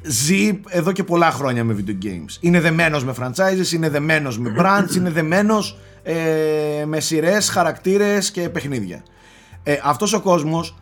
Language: Greek